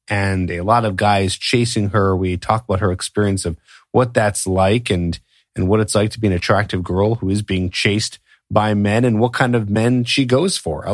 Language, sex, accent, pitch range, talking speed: English, male, American, 95-115 Hz, 225 wpm